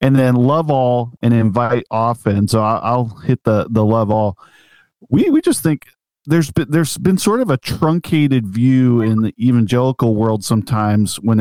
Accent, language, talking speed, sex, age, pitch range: American, English, 175 wpm, male, 40-59, 110-145 Hz